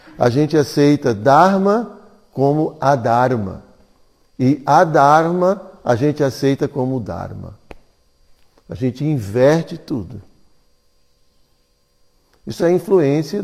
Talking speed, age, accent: 90 wpm, 60-79, Brazilian